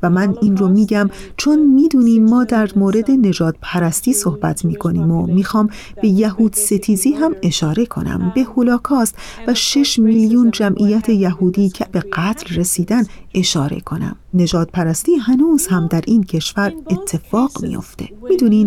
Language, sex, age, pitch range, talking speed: Persian, female, 40-59, 180-235 Hz, 145 wpm